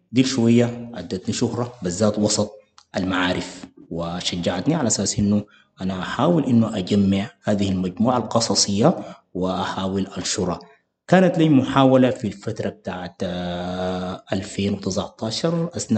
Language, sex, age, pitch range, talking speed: English, male, 30-49, 95-120 Hz, 100 wpm